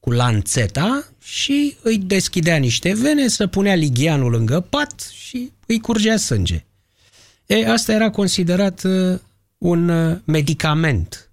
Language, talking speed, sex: Romanian, 115 wpm, male